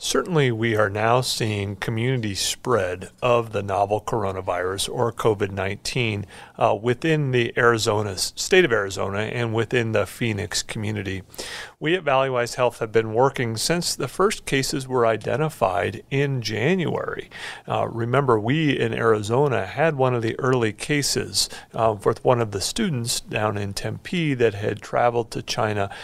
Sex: male